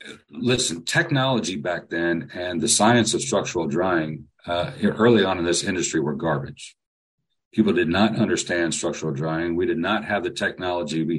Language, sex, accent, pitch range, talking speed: English, male, American, 90-115 Hz, 165 wpm